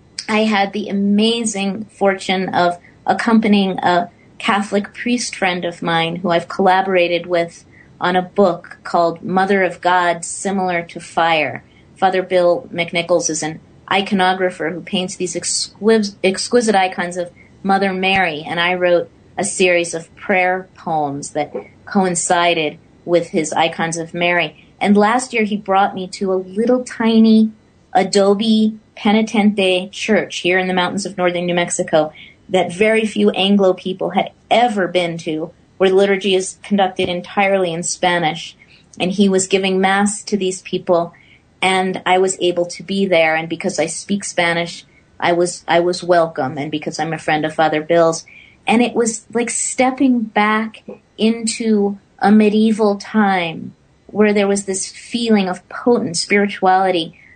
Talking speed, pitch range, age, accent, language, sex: 150 wpm, 175-200 Hz, 30-49, American, English, female